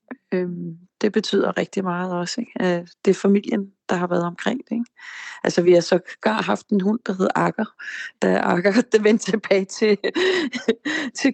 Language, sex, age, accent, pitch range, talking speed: Danish, female, 30-49, native, 185-225 Hz, 160 wpm